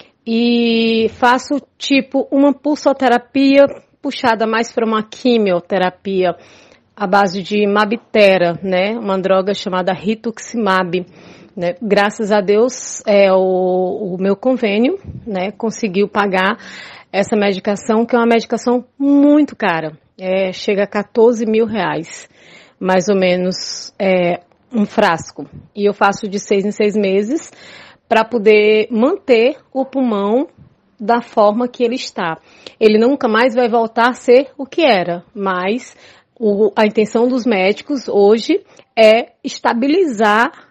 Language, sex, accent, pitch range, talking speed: Portuguese, female, Brazilian, 200-245 Hz, 130 wpm